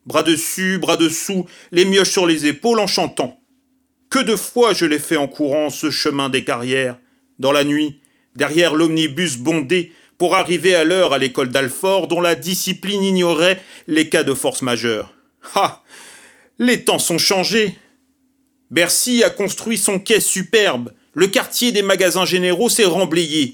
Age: 40-59